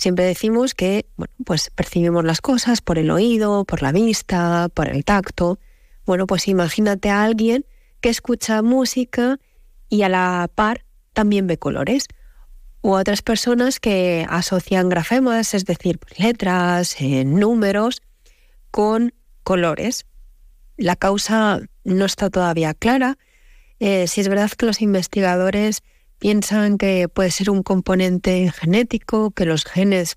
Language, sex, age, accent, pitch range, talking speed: Spanish, female, 20-39, Spanish, 175-215 Hz, 135 wpm